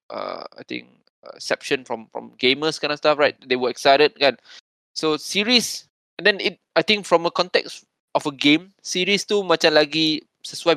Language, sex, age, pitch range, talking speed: Malay, male, 20-39, 140-175 Hz, 190 wpm